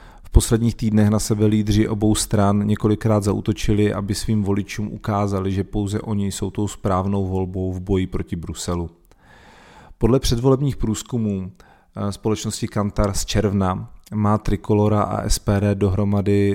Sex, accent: male, native